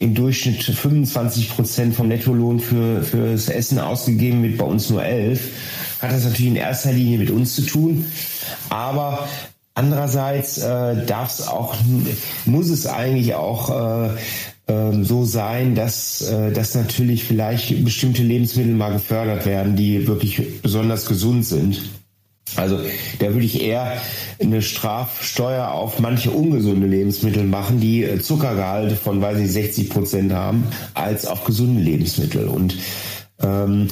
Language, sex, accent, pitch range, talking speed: German, male, German, 110-130 Hz, 135 wpm